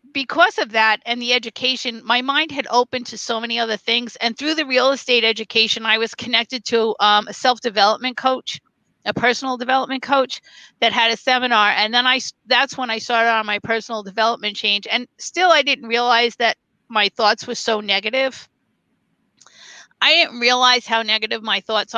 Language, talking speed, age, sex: English, 185 wpm, 50-69, female